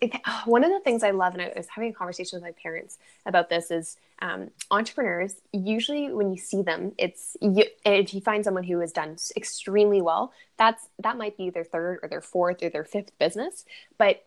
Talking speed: 215 wpm